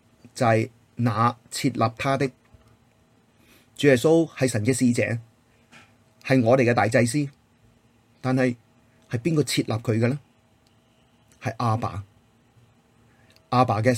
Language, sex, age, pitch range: Chinese, male, 30-49, 115-130 Hz